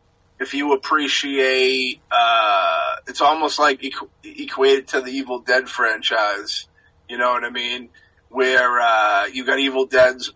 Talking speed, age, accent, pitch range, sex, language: 145 wpm, 40-59, American, 125-150 Hz, male, English